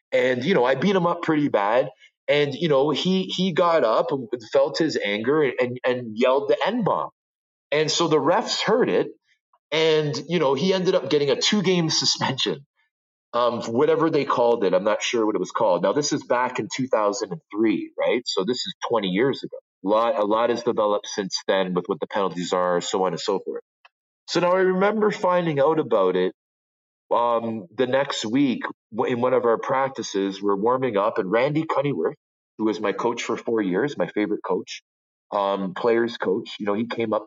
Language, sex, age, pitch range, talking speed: English, male, 30-49, 100-160 Hz, 200 wpm